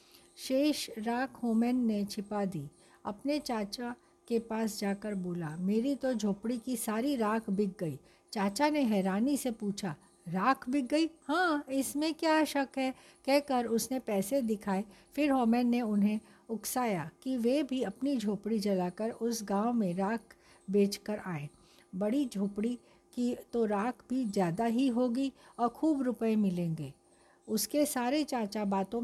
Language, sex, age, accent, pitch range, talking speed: Hindi, female, 60-79, native, 200-250 Hz, 150 wpm